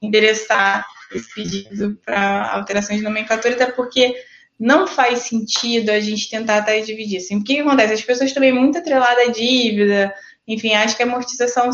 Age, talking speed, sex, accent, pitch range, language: 20-39, 170 wpm, female, Brazilian, 215-255 Hz, Portuguese